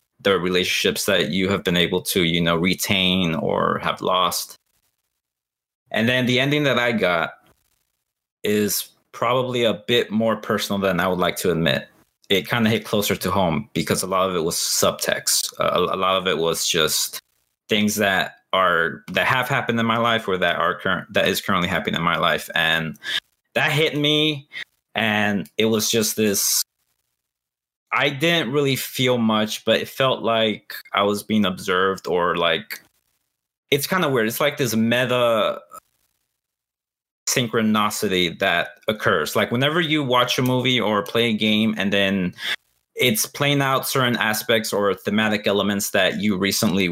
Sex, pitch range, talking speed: male, 100-125 Hz, 170 wpm